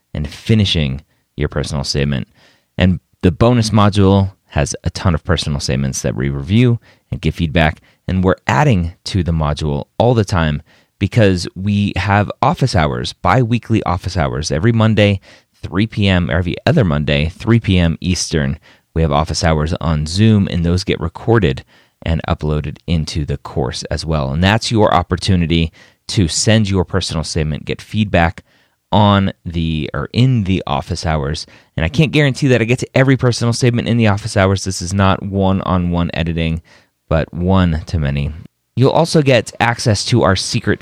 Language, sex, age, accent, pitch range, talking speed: English, male, 30-49, American, 75-105 Hz, 170 wpm